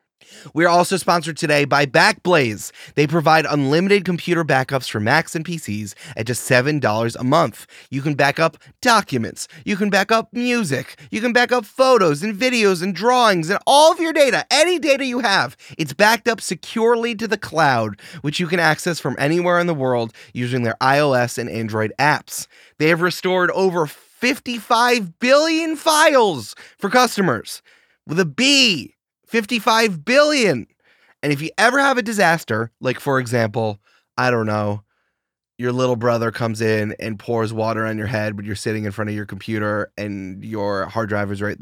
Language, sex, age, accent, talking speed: English, male, 30-49, American, 175 wpm